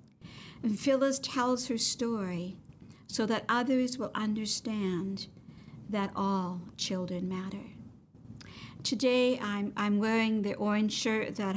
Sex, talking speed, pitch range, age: female, 115 wpm, 195-235 Hz, 60-79